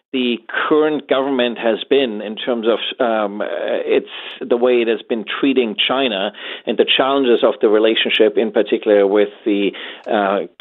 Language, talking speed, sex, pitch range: English, 160 wpm, male, 110-150 Hz